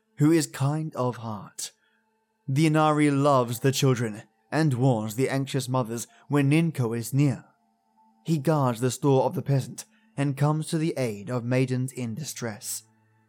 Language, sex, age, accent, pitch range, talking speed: English, male, 20-39, British, 125-160 Hz, 160 wpm